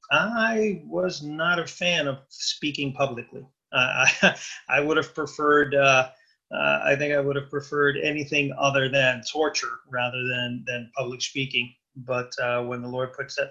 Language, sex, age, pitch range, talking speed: English, male, 30-49, 130-145 Hz, 170 wpm